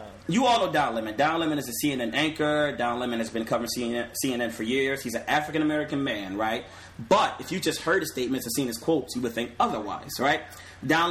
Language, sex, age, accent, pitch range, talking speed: English, male, 30-49, American, 115-150 Hz, 225 wpm